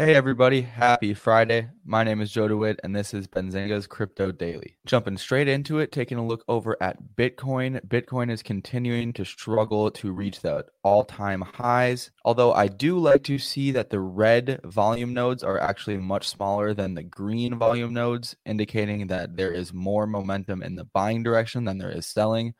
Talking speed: 185 wpm